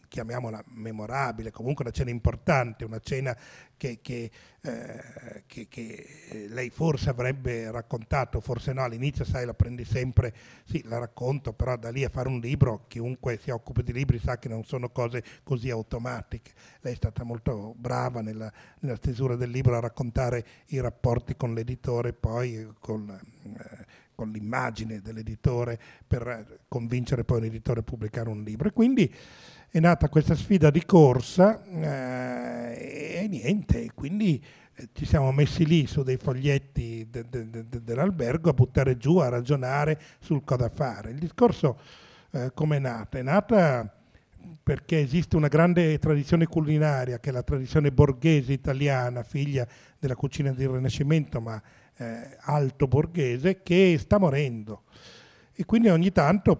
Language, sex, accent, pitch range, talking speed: Italian, male, native, 120-145 Hz, 155 wpm